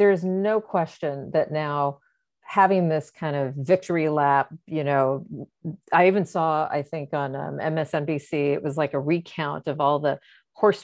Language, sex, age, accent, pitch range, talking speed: English, female, 40-59, American, 150-195 Hz, 170 wpm